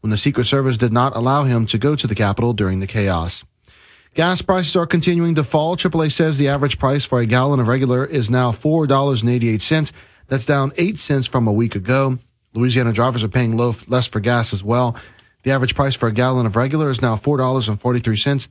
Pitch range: 120-145 Hz